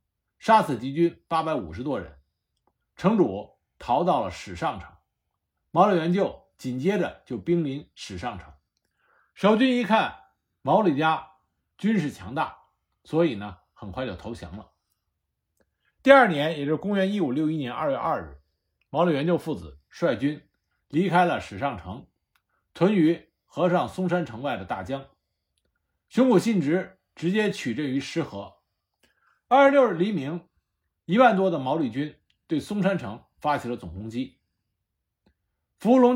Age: 60-79